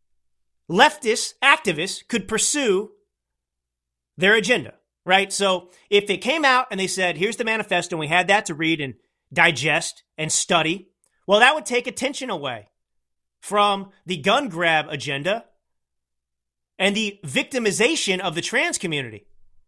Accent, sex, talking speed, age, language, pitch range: American, male, 140 wpm, 30-49, English, 135-215 Hz